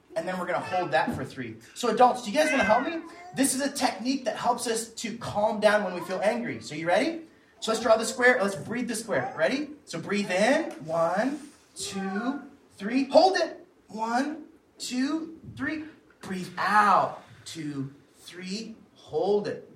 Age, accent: 30-49, American